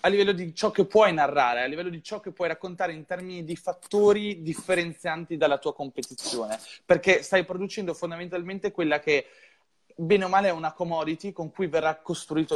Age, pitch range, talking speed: 20-39, 145-185 Hz, 180 wpm